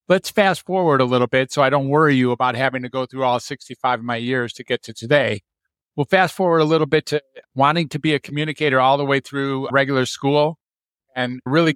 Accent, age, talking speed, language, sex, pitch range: American, 50-69, 230 wpm, English, male, 125-150 Hz